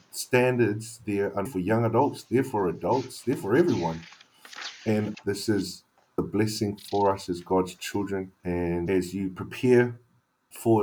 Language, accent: English, Australian